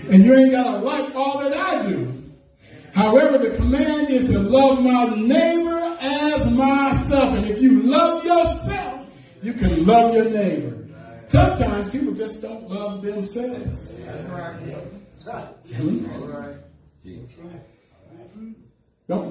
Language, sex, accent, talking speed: English, male, American, 120 wpm